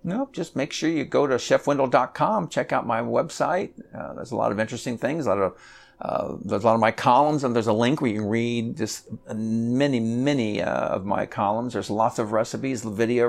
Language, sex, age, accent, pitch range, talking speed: English, male, 50-69, American, 100-125 Hz, 225 wpm